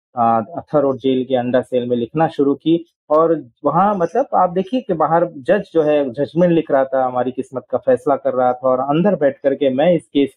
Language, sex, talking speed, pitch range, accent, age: English, male, 215 wpm, 125-160 Hz, Indian, 40-59